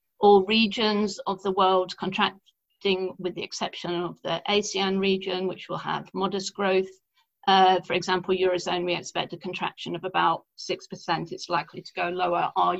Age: 40-59